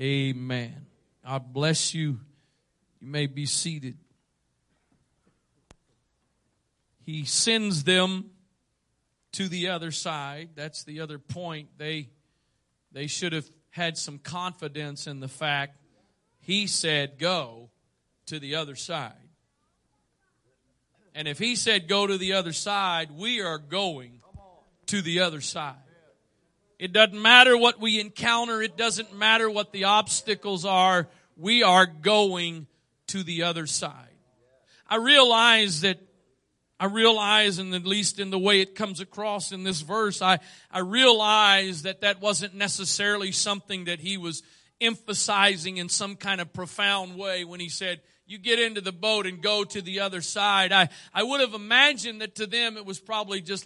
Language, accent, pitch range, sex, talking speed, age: English, American, 150-205 Hz, male, 150 wpm, 40-59